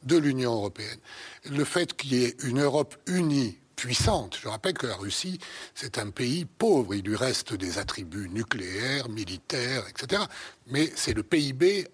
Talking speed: 165 wpm